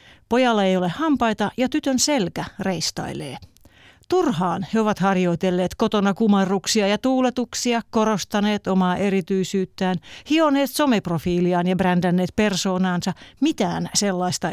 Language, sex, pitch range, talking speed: Finnish, female, 180-225 Hz, 105 wpm